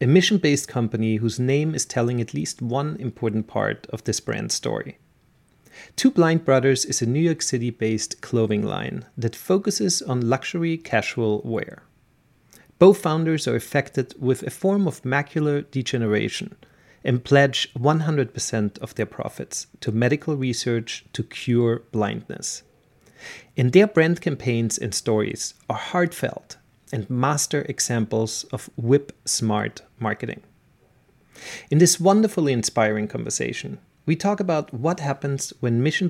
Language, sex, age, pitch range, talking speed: English, male, 40-59, 120-165 Hz, 135 wpm